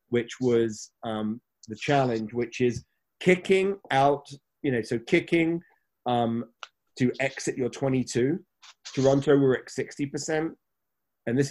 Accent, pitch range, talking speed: British, 110-140 Hz, 125 wpm